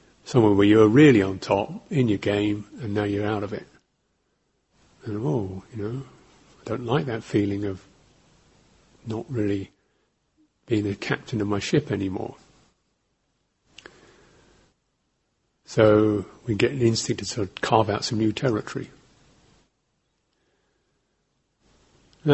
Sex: male